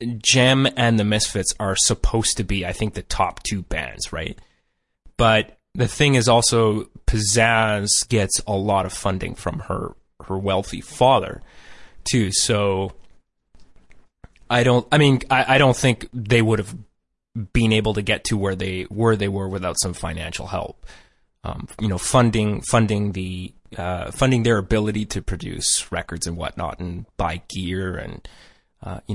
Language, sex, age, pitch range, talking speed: English, male, 20-39, 90-115 Hz, 165 wpm